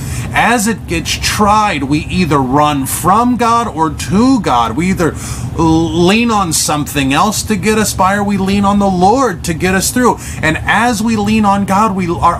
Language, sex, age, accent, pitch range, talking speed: English, male, 30-49, American, 140-230 Hz, 195 wpm